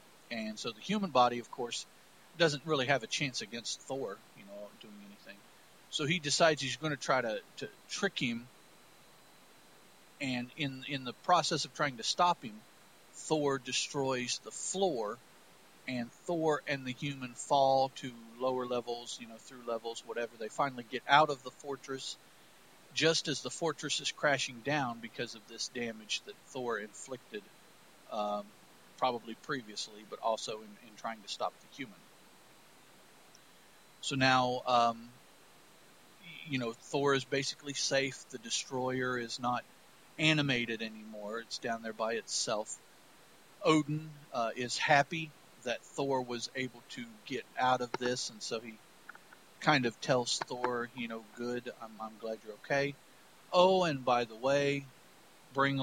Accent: American